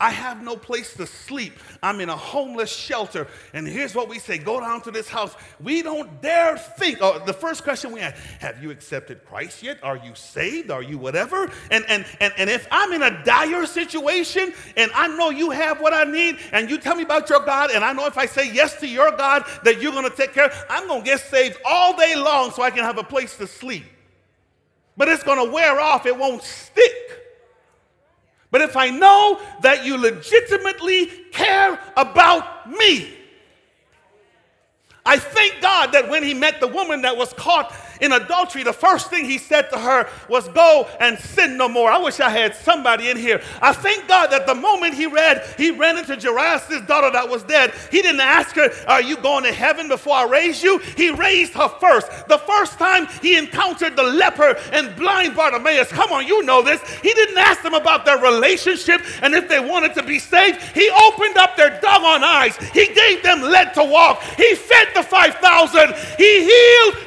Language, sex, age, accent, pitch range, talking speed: English, male, 40-59, American, 260-360 Hz, 210 wpm